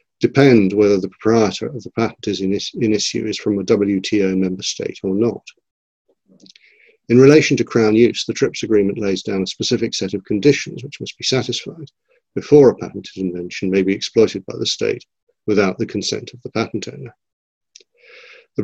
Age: 50-69